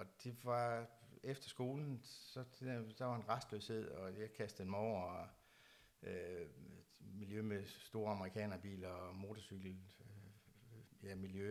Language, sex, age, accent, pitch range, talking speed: Danish, male, 60-79, native, 100-120 Hz, 145 wpm